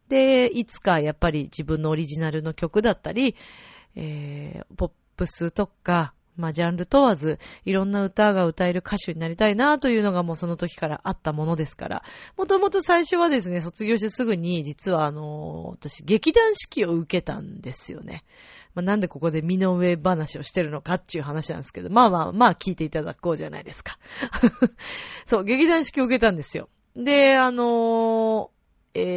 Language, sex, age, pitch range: Japanese, female, 30-49, 160-245 Hz